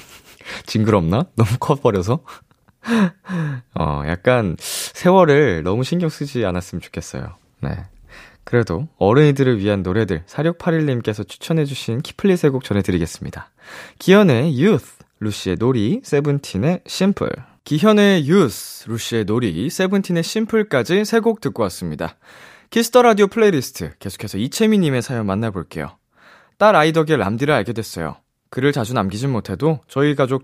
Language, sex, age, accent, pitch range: Korean, male, 20-39, native, 100-160 Hz